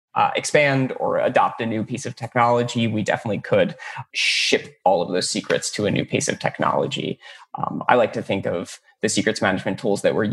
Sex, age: male, 20-39